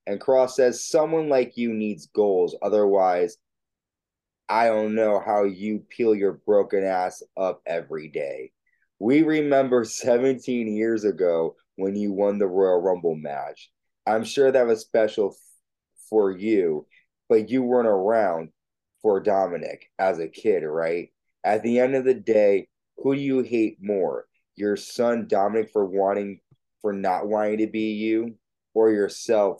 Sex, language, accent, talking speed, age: male, English, American, 150 wpm, 20-39